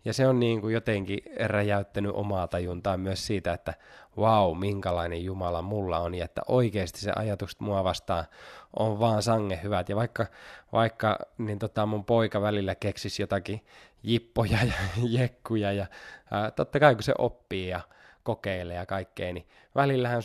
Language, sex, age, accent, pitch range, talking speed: Finnish, male, 20-39, native, 95-115 Hz, 160 wpm